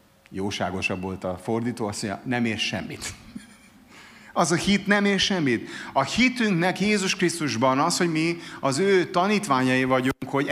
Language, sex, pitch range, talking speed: Hungarian, male, 130-175 Hz, 150 wpm